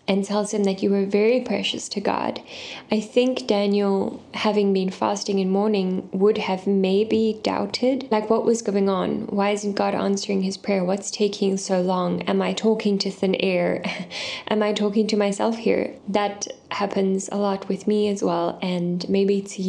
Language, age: English, 10-29